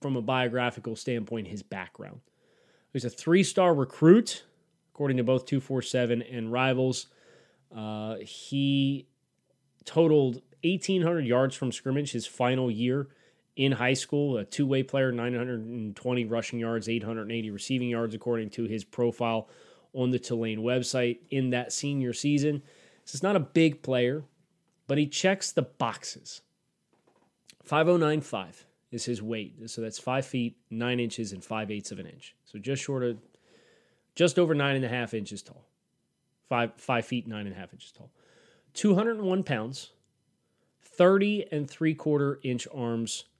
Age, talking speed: 20-39, 145 wpm